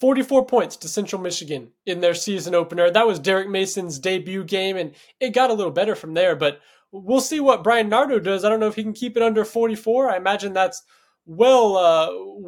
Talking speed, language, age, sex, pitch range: 215 wpm, English, 20-39, male, 175-230 Hz